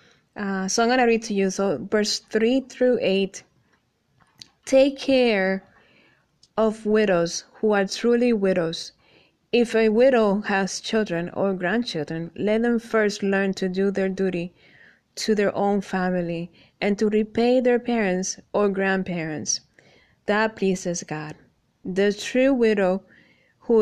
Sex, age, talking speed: female, 20-39, 135 wpm